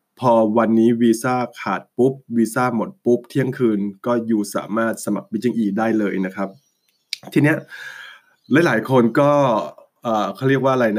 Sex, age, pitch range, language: male, 20-39, 115-140 Hz, Thai